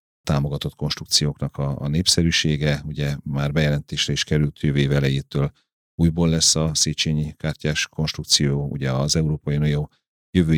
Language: Hungarian